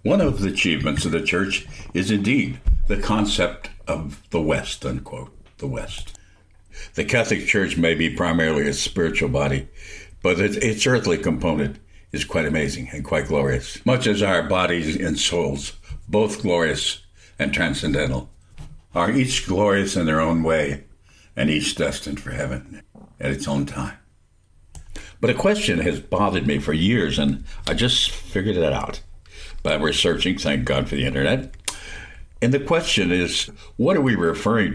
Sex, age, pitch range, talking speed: male, 60-79, 80-100 Hz, 160 wpm